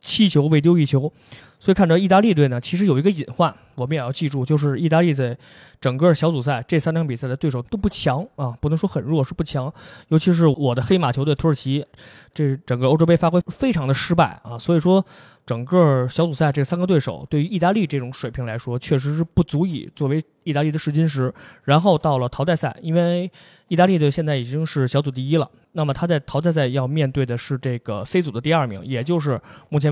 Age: 20-39